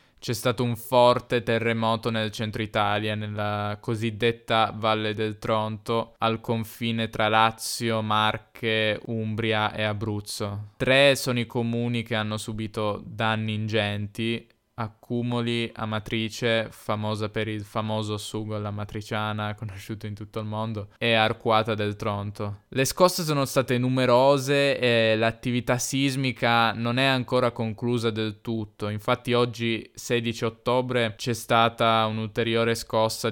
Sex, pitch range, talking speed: male, 110-120 Hz, 125 wpm